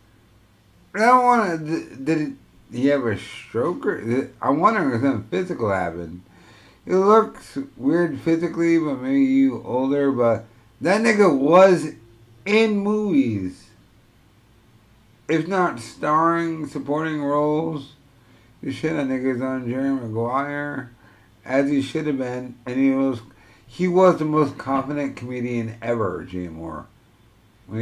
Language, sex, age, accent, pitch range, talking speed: English, male, 50-69, American, 110-145 Hz, 130 wpm